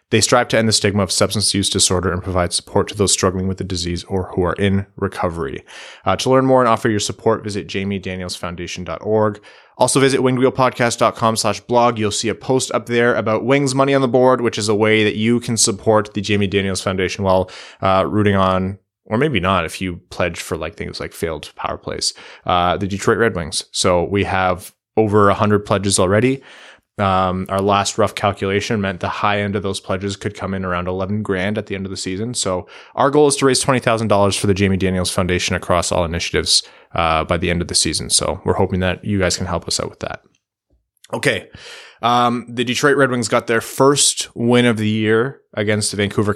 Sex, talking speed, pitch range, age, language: male, 215 wpm, 95-115 Hz, 20-39, English